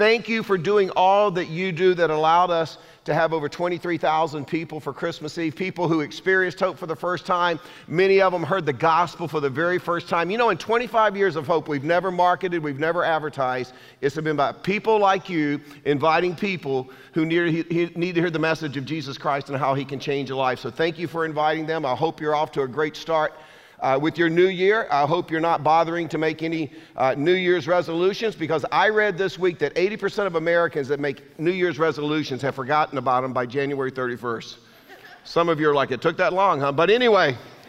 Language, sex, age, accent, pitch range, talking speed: English, male, 50-69, American, 150-190 Hz, 220 wpm